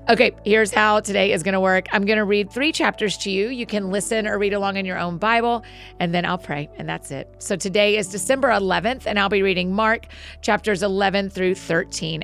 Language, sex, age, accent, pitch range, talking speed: English, female, 40-59, American, 170-215 Hz, 230 wpm